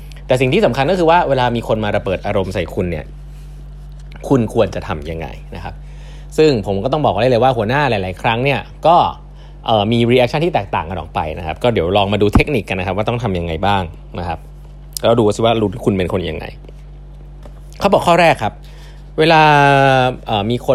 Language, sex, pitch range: Thai, male, 105-150 Hz